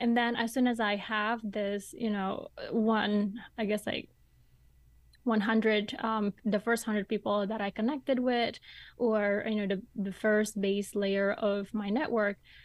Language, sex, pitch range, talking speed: English, female, 205-230 Hz, 165 wpm